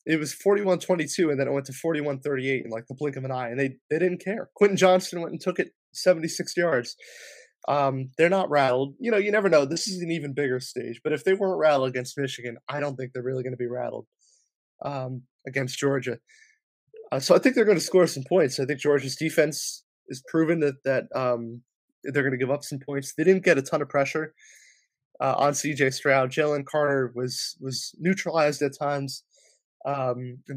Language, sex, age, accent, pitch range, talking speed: English, male, 20-39, American, 130-165 Hz, 220 wpm